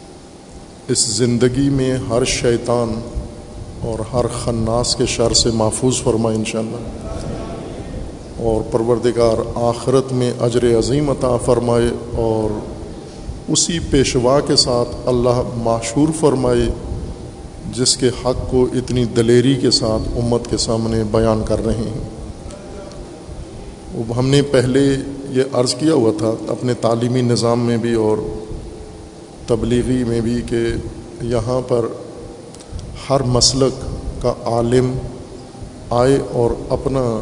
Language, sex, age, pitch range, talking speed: Urdu, male, 50-69, 115-130 Hz, 115 wpm